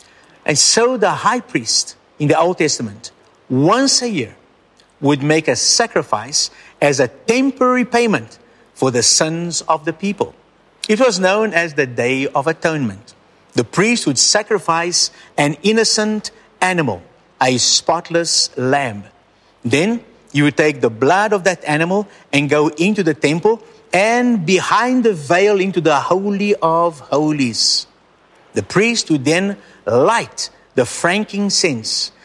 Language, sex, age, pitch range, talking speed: English, male, 50-69, 140-210 Hz, 140 wpm